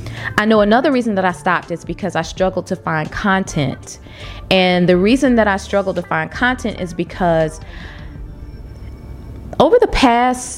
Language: English